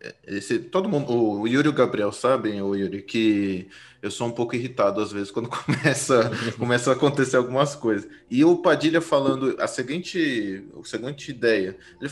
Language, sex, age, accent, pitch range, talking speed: Portuguese, male, 20-39, Brazilian, 110-165 Hz, 150 wpm